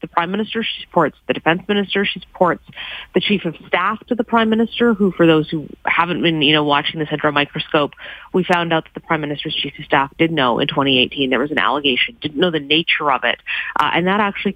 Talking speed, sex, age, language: 240 wpm, female, 30-49, English